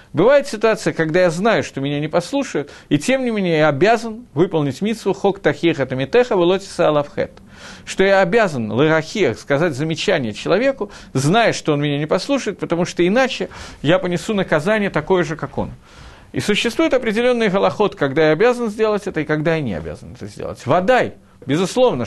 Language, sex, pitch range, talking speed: Russian, male, 150-215 Hz, 180 wpm